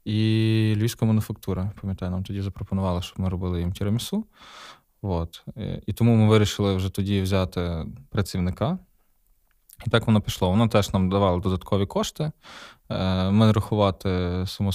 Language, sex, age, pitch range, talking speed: Ukrainian, male, 20-39, 95-110 Hz, 135 wpm